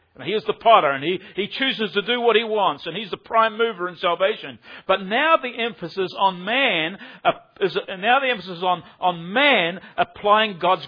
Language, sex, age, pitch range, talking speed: English, male, 50-69, 190-255 Hz, 205 wpm